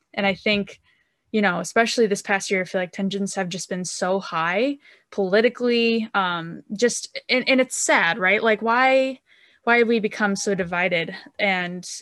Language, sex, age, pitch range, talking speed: English, female, 10-29, 185-220 Hz, 175 wpm